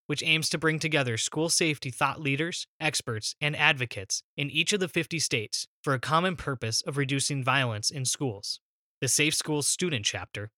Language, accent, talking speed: English, American, 180 wpm